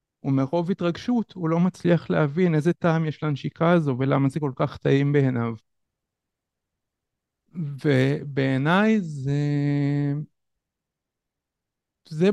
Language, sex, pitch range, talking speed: Hebrew, male, 130-160 Hz, 95 wpm